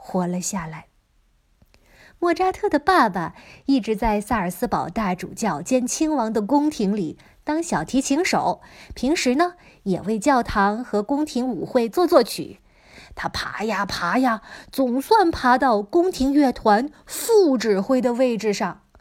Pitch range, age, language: 205-285 Hz, 20-39, Chinese